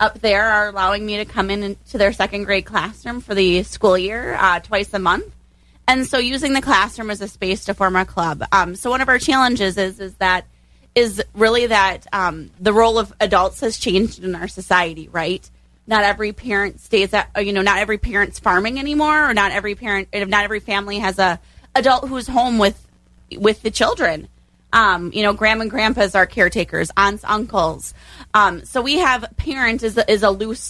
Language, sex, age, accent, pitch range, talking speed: English, female, 30-49, American, 190-225 Hz, 205 wpm